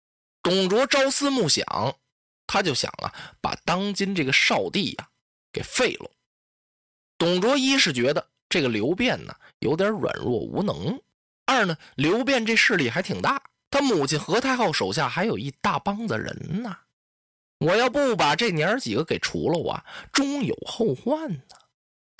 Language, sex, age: Chinese, male, 20-39